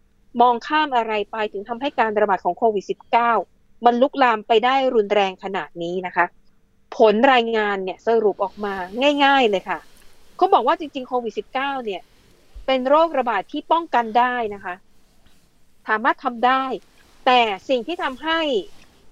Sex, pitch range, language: female, 210-265 Hz, Thai